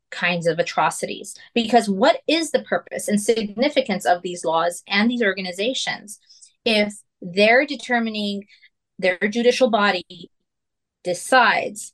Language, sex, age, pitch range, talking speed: English, female, 30-49, 200-250 Hz, 115 wpm